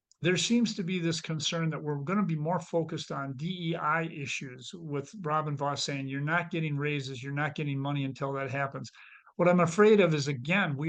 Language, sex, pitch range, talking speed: English, male, 140-175 Hz, 210 wpm